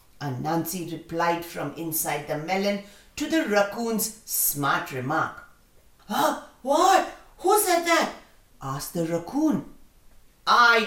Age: 50-69